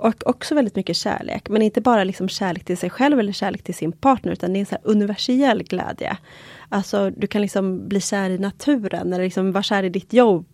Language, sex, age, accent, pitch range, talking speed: Swedish, female, 30-49, native, 175-215 Hz, 230 wpm